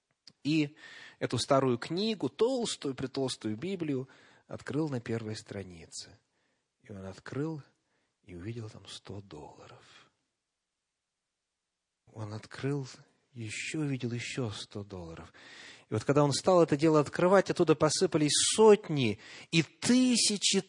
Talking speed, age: 115 wpm, 30-49